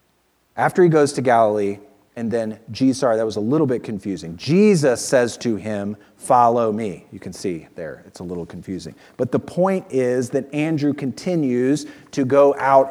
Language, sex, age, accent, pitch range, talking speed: English, male, 40-59, American, 110-150 Hz, 180 wpm